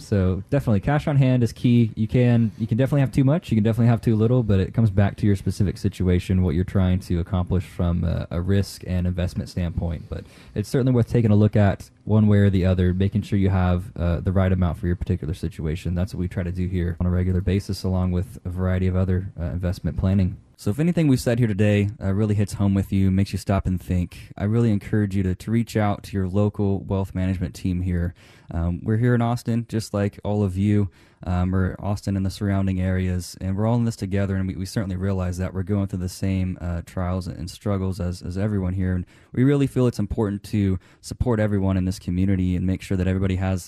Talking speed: 245 wpm